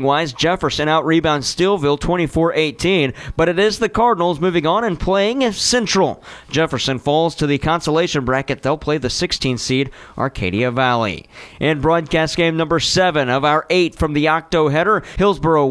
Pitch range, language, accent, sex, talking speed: 145-175 Hz, English, American, male, 160 wpm